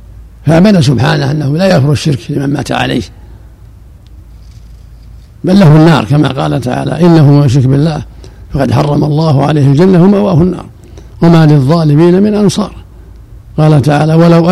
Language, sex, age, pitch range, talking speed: Arabic, male, 60-79, 105-165 Hz, 135 wpm